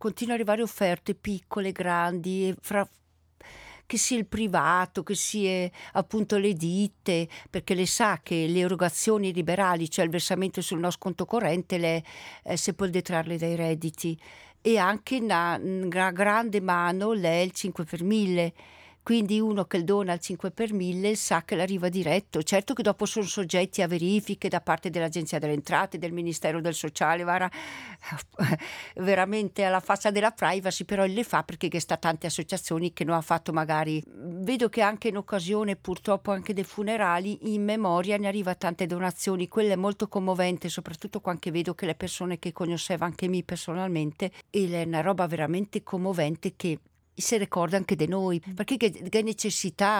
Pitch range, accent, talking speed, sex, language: 175-210 Hz, native, 165 wpm, female, Italian